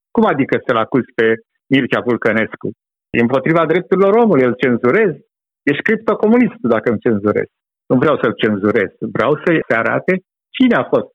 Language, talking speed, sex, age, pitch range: Romanian, 150 wpm, male, 60-79, 130-180 Hz